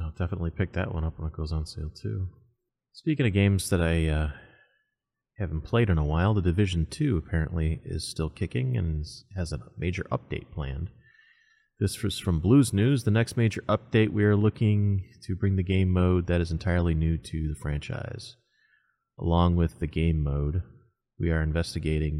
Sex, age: male, 30-49